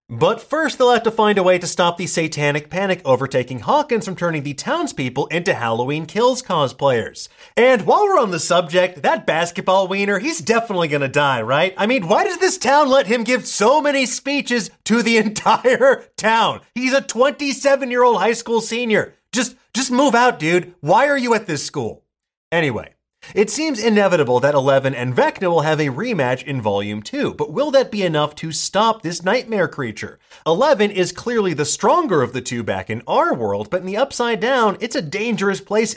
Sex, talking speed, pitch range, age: male, 195 wpm, 155-240 Hz, 30-49